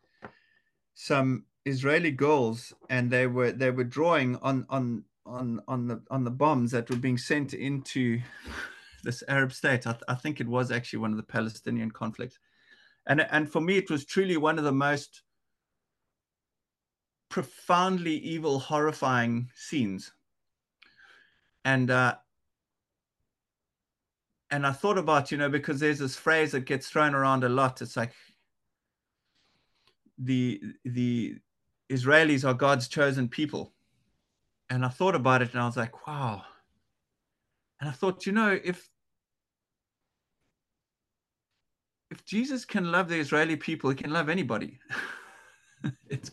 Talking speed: 135 wpm